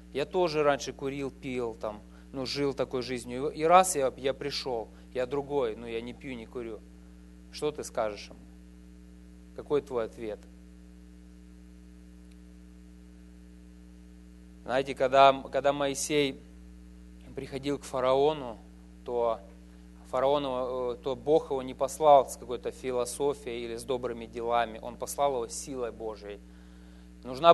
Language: English